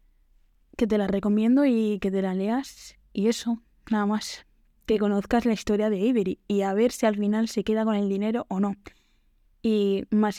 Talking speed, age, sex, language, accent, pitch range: 190 wpm, 10-29, female, Spanish, Spanish, 195-225 Hz